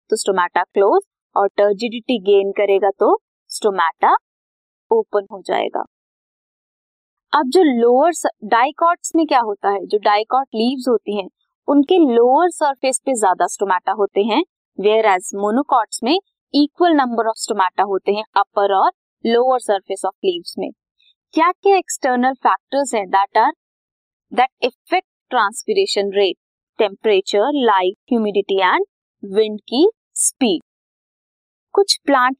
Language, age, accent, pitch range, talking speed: Hindi, 20-39, native, 205-310 Hz, 120 wpm